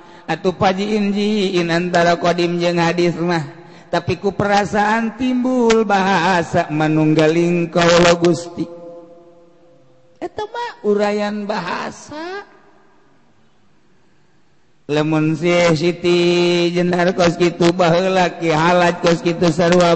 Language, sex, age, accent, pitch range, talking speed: Indonesian, male, 50-69, native, 170-180 Hz, 85 wpm